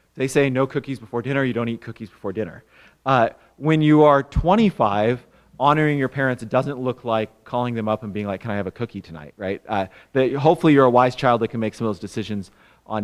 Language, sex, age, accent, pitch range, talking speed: English, male, 30-49, American, 110-145 Hz, 240 wpm